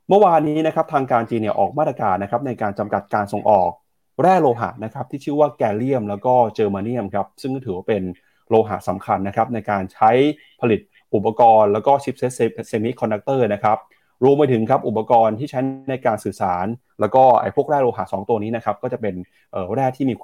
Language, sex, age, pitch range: Thai, male, 30-49, 105-135 Hz